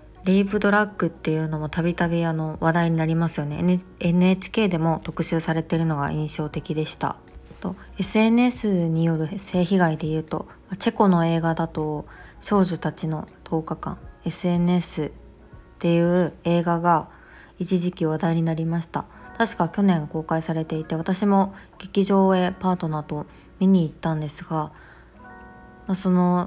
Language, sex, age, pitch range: Japanese, female, 20-39, 155-180 Hz